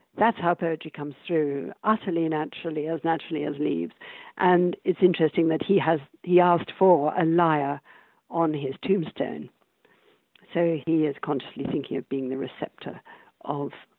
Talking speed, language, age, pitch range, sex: 150 wpm, English, 60-79, 160-195 Hz, female